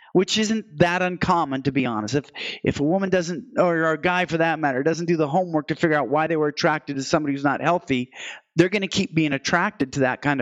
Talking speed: 250 wpm